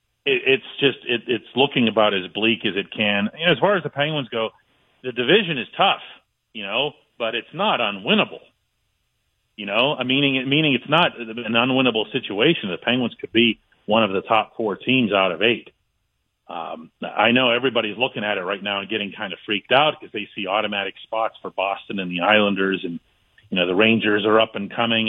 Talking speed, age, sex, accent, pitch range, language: 195 wpm, 40-59, male, American, 100-120 Hz, English